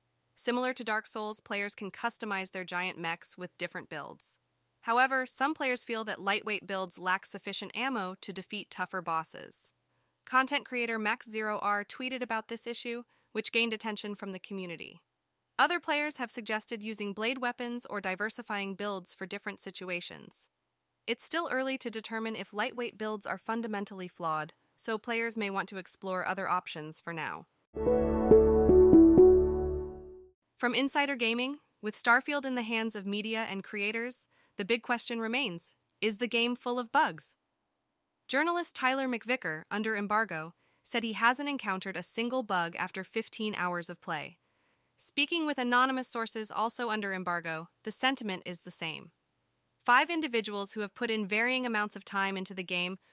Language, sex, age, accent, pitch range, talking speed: English, female, 20-39, American, 190-245 Hz, 160 wpm